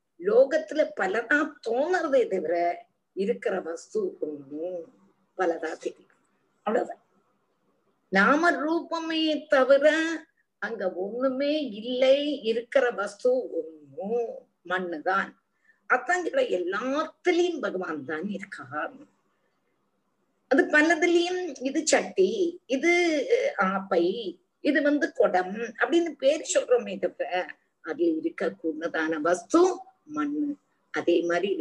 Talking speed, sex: 85 wpm, female